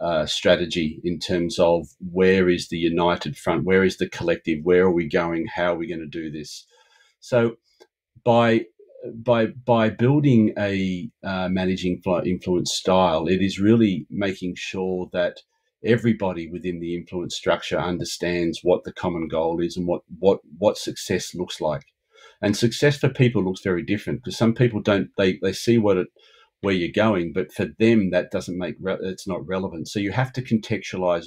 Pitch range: 90-105 Hz